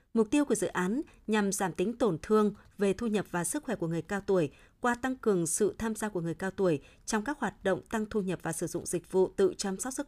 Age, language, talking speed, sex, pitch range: 20-39, Vietnamese, 275 wpm, female, 185-225 Hz